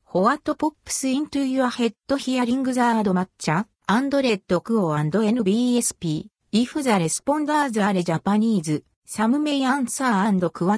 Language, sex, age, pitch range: Japanese, female, 50-69, 180-265 Hz